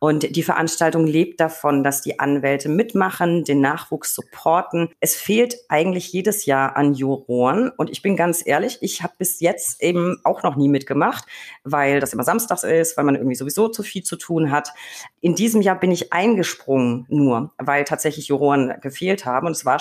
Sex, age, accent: female, 40-59, German